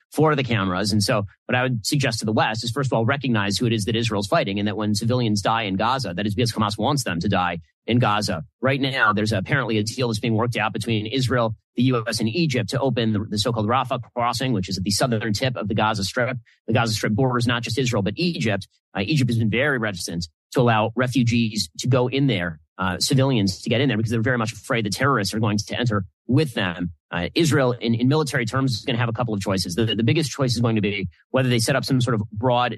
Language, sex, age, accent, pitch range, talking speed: English, male, 30-49, American, 105-125 Hz, 265 wpm